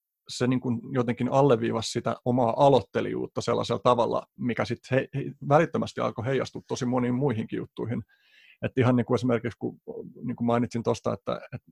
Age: 30-49